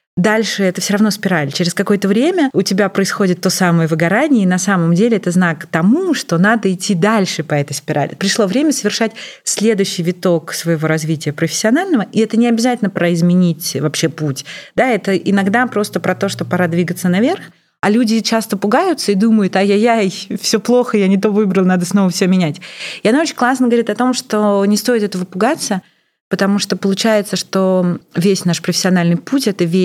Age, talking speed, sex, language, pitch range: 30-49, 185 wpm, female, Russian, 170-210 Hz